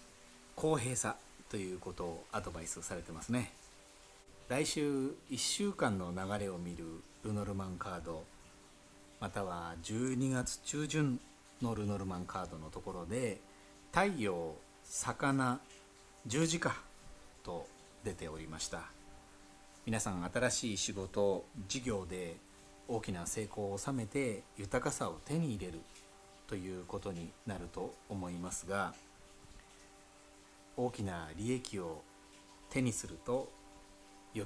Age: 40-59